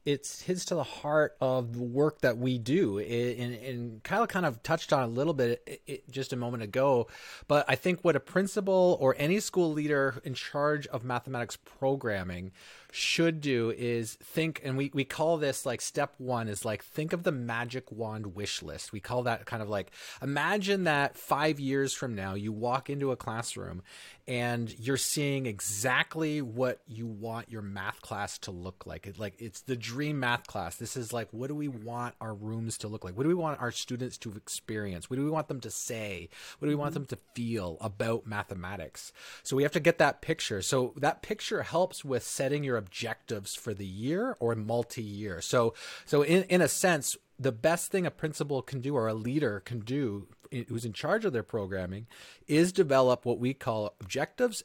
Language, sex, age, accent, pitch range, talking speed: English, male, 30-49, American, 115-150 Hz, 205 wpm